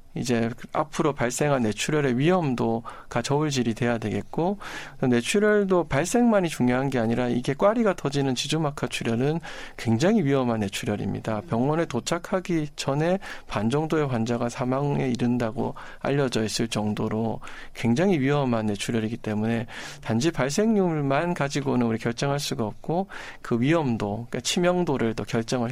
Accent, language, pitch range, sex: native, Korean, 115-155 Hz, male